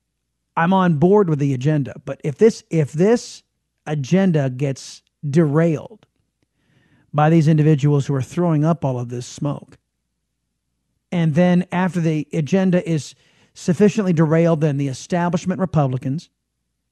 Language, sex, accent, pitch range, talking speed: English, male, American, 145-195 Hz, 130 wpm